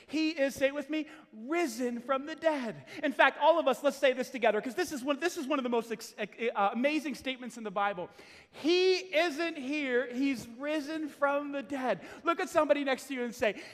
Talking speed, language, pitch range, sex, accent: 220 wpm, English, 250-335 Hz, male, American